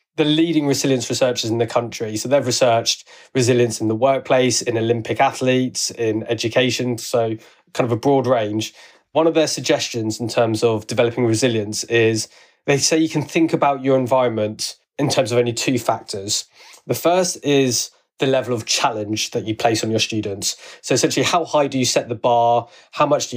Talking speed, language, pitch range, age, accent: 190 wpm, English, 115-140 Hz, 20-39, British